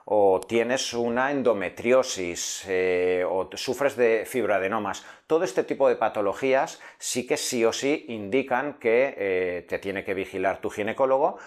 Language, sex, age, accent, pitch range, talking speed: Spanish, male, 40-59, Spanish, 100-140 Hz, 145 wpm